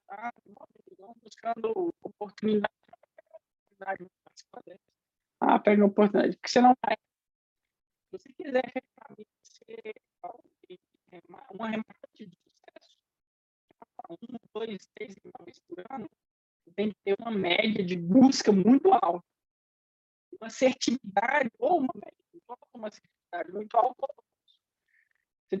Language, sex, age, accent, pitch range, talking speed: Portuguese, male, 20-39, Brazilian, 205-320 Hz, 125 wpm